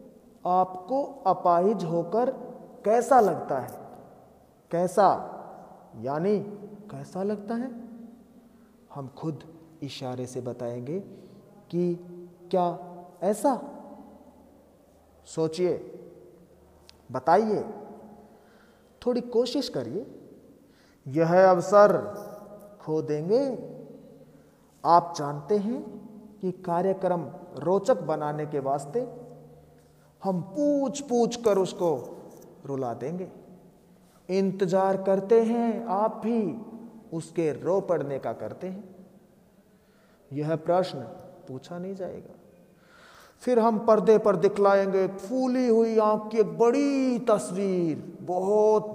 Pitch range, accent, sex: 165-220 Hz, native, male